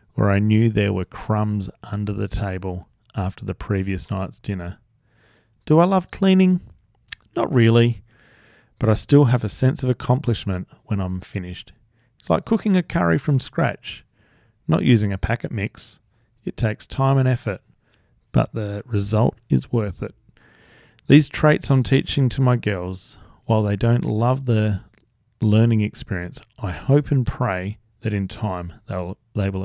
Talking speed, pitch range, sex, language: 160 wpm, 95-125 Hz, male, English